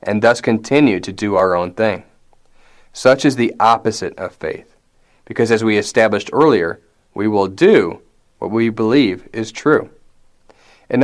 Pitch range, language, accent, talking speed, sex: 105-130 Hz, English, American, 150 wpm, male